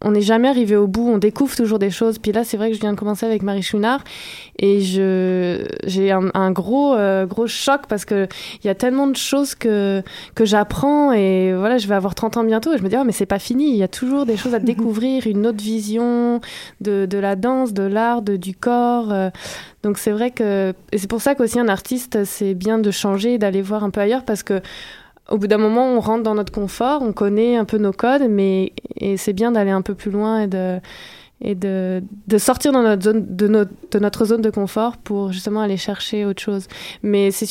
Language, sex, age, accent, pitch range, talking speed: French, female, 20-39, French, 200-230 Hz, 240 wpm